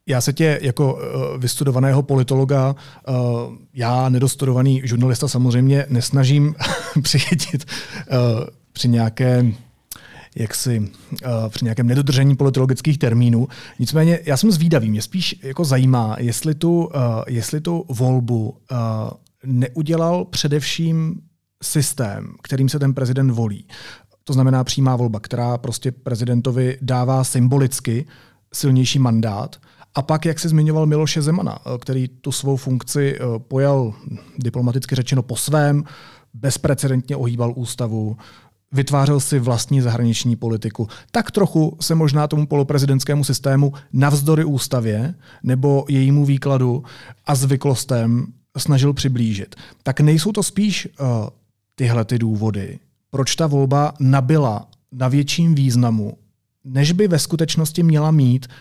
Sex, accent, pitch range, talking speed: male, native, 120-145 Hz, 115 wpm